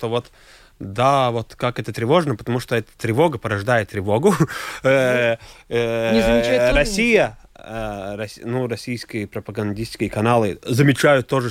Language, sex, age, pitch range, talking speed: Russian, male, 30-49, 110-140 Hz, 105 wpm